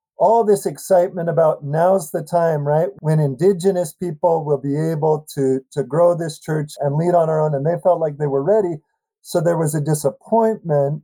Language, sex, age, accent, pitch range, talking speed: English, male, 40-59, American, 145-175 Hz, 195 wpm